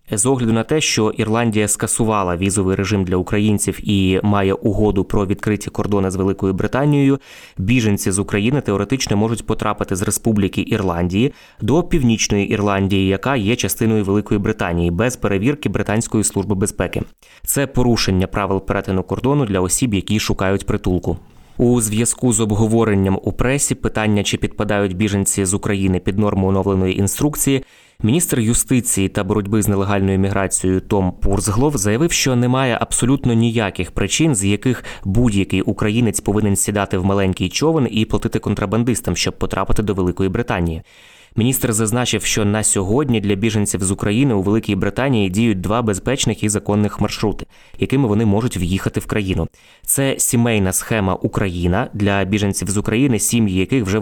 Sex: male